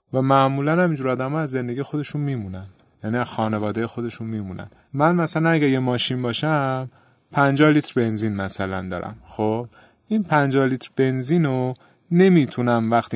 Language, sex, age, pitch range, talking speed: Persian, male, 30-49, 105-135 Hz, 140 wpm